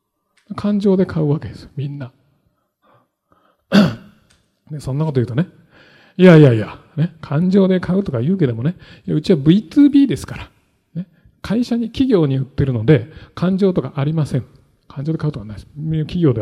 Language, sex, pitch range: Japanese, male, 125-185 Hz